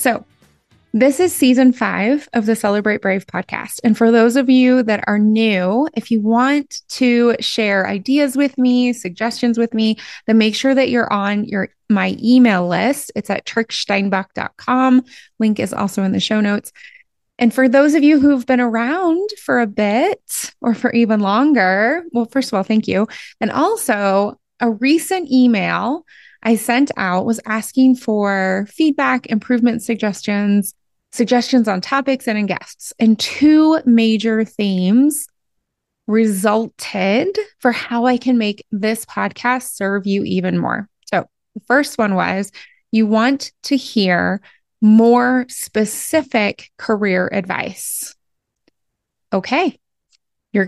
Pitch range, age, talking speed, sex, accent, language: 210-255 Hz, 20-39, 145 wpm, female, American, English